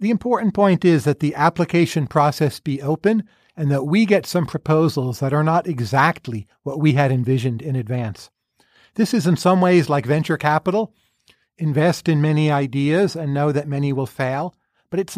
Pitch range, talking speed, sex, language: 145-175 Hz, 180 wpm, male, English